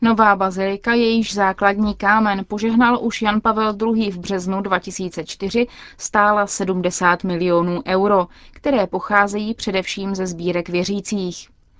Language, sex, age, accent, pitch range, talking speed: Czech, female, 20-39, native, 185-220 Hz, 115 wpm